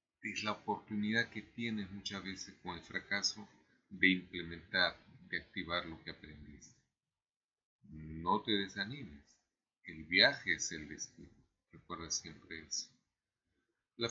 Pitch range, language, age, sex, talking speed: 85-115 Hz, Spanish, 40-59, male, 125 wpm